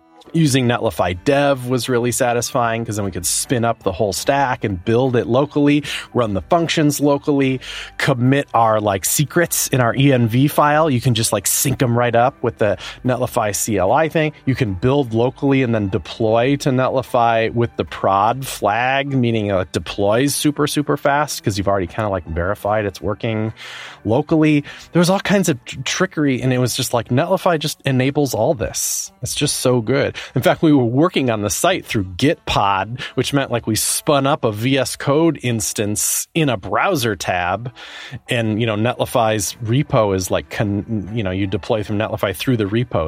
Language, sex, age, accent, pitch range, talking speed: English, male, 30-49, American, 110-140 Hz, 185 wpm